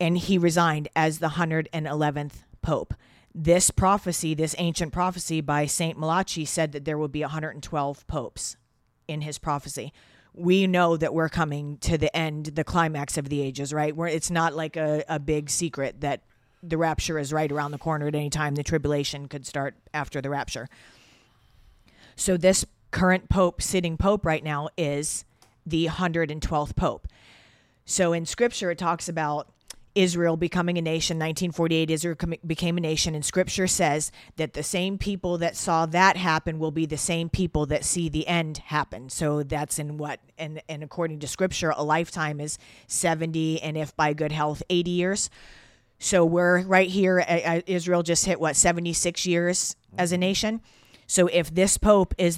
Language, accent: English, American